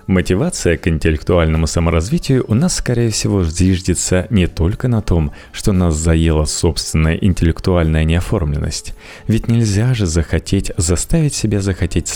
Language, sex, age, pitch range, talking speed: Russian, male, 30-49, 80-105 Hz, 130 wpm